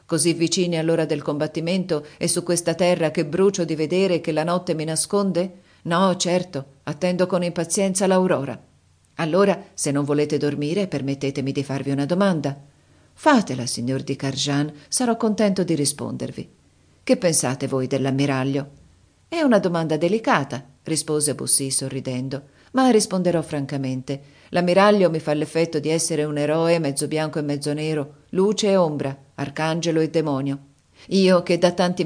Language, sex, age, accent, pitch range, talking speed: Italian, female, 40-59, native, 145-175 Hz, 150 wpm